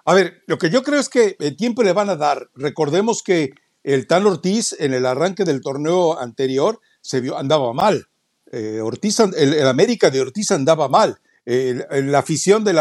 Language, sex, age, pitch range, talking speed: Spanish, male, 60-79, 145-195 Hz, 185 wpm